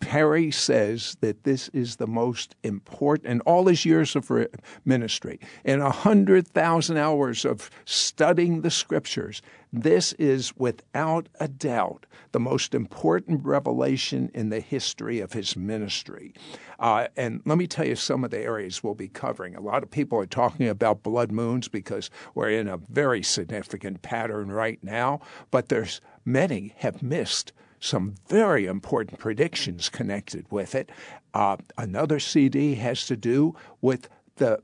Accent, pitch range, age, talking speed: American, 110-155 Hz, 60-79, 145 wpm